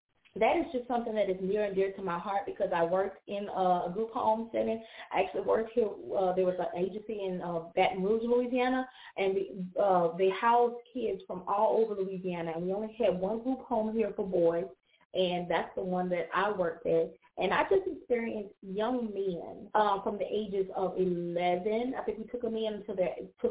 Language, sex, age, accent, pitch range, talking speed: English, female, 20-39, American, 180-220 Hz, 205 wpm